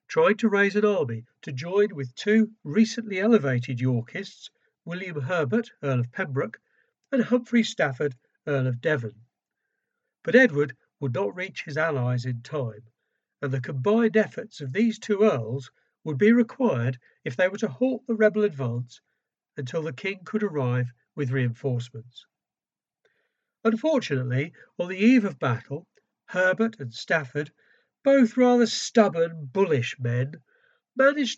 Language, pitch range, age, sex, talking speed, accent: English, 130-215 Hz, 60-79, male, 140 wpm, British